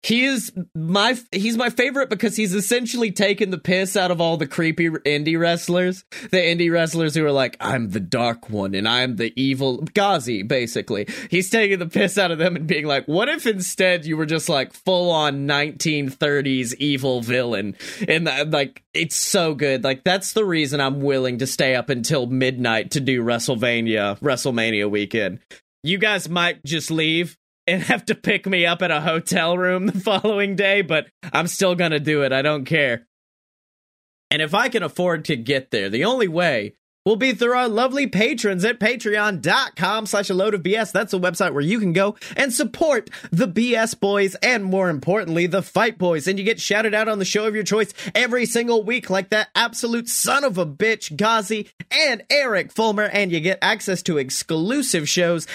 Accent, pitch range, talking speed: American, 155-210 Hz, 195 wpm